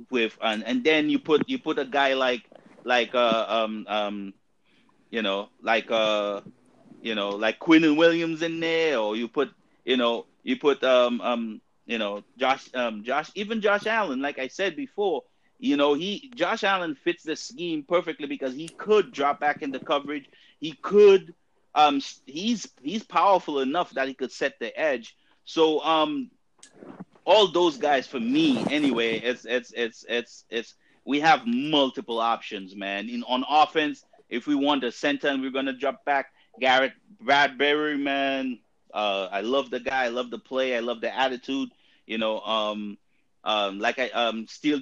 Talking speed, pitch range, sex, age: 175 wpm, 120-160 Hz, male, 30-49